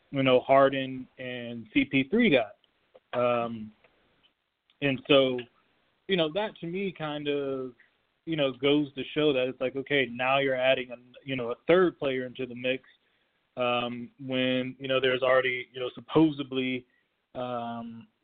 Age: 20-39